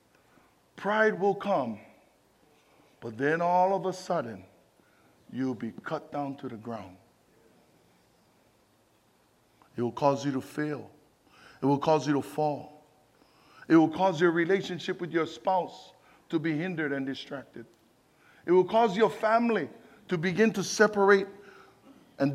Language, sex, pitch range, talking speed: English, male, 130-180 Hz, 135 wpm